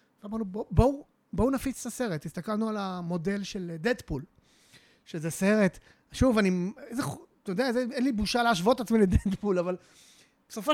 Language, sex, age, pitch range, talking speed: Hebrew, male, 30-49, 180-250 Hz, 160 wpm